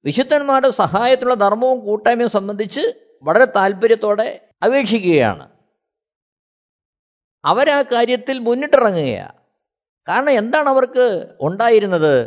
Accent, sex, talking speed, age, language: native, male, 75 wpm, 50-69, Malayalam